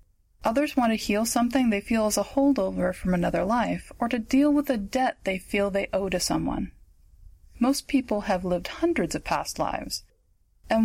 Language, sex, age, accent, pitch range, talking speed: English, female, 30-49, American, 190-255 Hz, 190 wpm